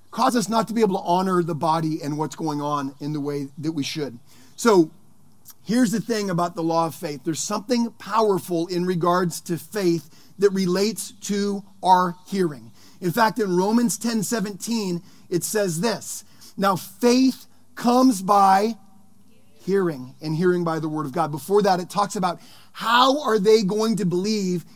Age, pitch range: 40-59, 180-220 Hz